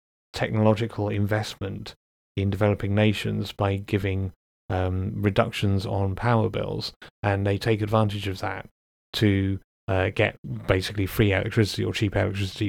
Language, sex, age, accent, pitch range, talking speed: English, male, 30-49, British, 100-110 Hz, 130 wpm